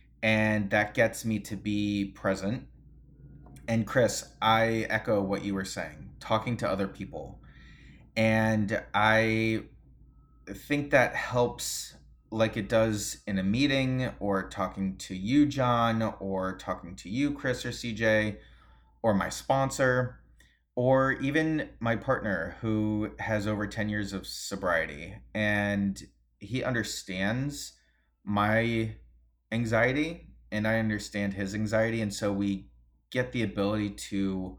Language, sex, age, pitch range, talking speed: English, male, 30-49, 95-110 Hz, 125 wpm